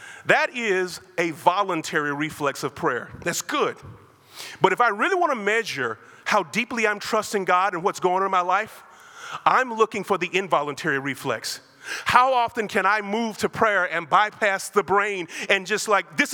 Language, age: English, 30-49